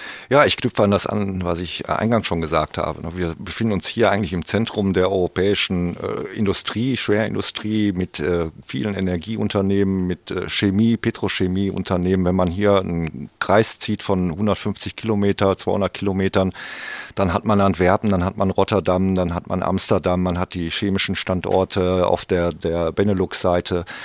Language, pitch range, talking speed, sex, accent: German, 90-100 Hz, 160 wpm, male, German